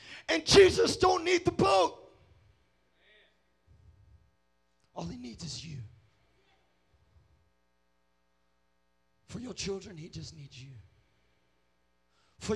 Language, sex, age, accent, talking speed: English, male, 30-49, American, 90 wpm